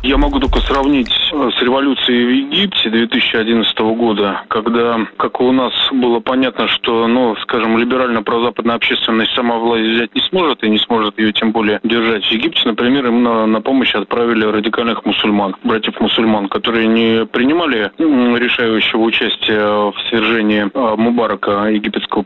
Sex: male